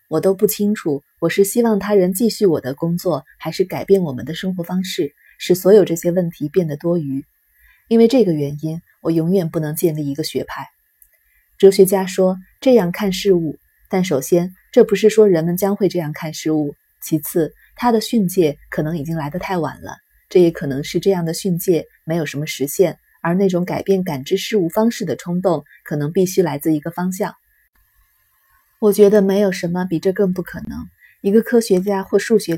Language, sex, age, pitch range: Chinese, female, 20-39, 165-200 Hz